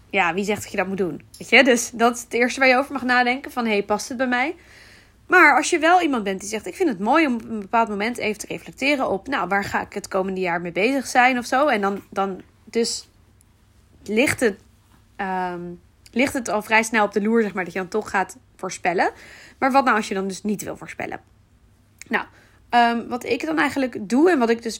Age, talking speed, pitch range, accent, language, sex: 20-39, 250 wpm, 195-255 Hz, Dutch, Dutch, female